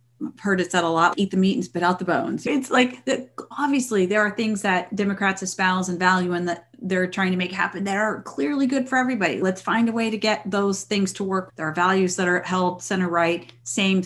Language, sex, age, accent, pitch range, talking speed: English, female, 30-49, American, 170-215 Hz, 245 wpm